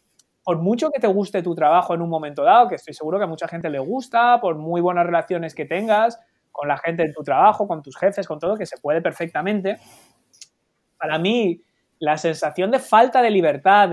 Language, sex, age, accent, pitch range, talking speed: Spanish, male, 20-39, Spanish, 155-205 Hz, 210 wpm